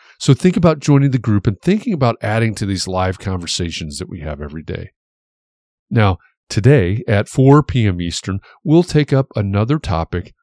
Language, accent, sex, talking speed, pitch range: English, American, male, 175 wpm, 95-135 Hz